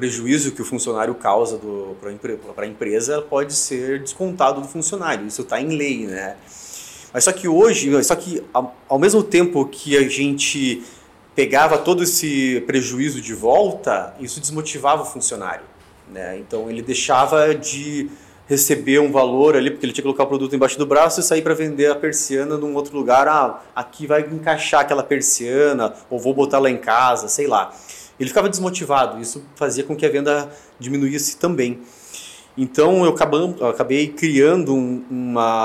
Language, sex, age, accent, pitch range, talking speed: Portuguese, male, 30-49, Brazilian, 130-160 Hz, 165 wpm